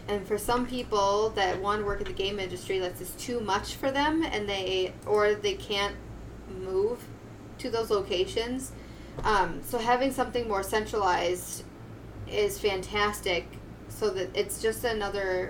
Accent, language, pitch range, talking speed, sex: American, English, 180-225 Hz, 155 wpm, female